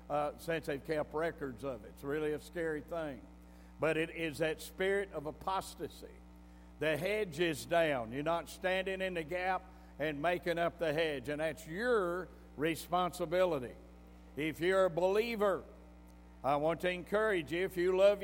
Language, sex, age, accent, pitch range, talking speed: English, male, 60-79, American, 140-180 Hz, 165 wpm